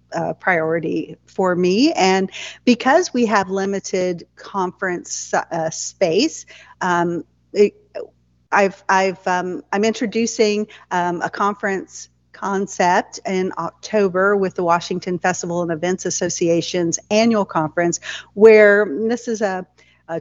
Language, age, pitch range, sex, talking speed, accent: English, 40-59, 180-210 Hz, female, 115 wpm, American